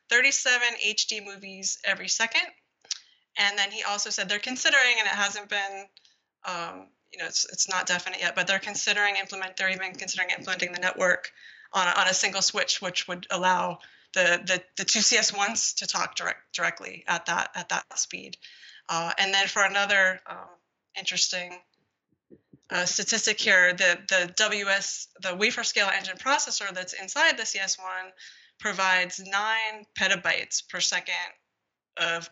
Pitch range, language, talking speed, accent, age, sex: 180-210 Hz, English, 160 wpm, American, 20-39, female